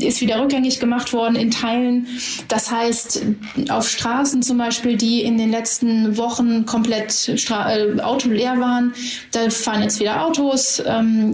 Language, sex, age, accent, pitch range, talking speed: German, female, 30-49, German, 225-250 Hz, 155 wpm